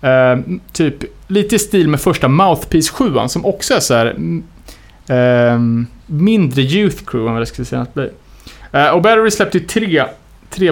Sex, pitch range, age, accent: male, 125-160 Hz, 30-49, Norwegian